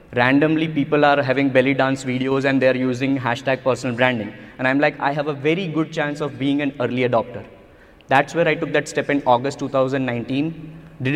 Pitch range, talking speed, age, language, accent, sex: 130-155 Hz, 200 wpm, 20-39, English, Indian, male